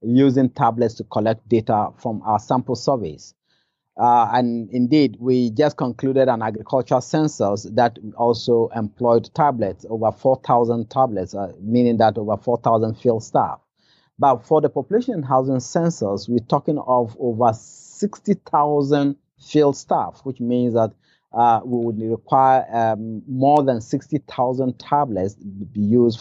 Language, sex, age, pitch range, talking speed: English, male, 30-49, 110-135 Hz, 135 wpm